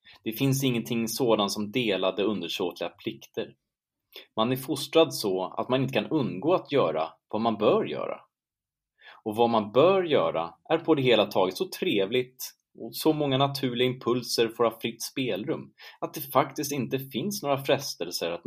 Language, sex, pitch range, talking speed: Swedish, male, 100-130 Hz, 170 wpm